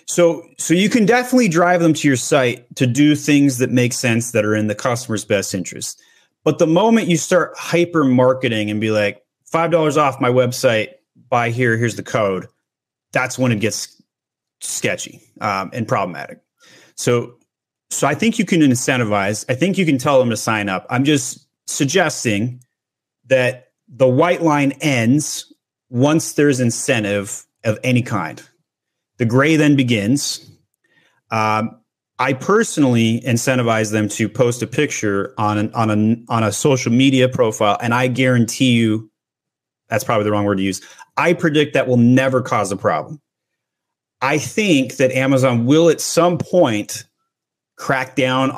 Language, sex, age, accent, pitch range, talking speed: English, male, 30-49, American, 115-150 Hz, 160 wpm